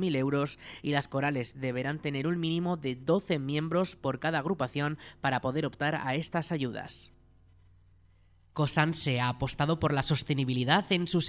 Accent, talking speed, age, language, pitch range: Spanish, 155 wpm, 20-39, Spanish, 130-165 Hz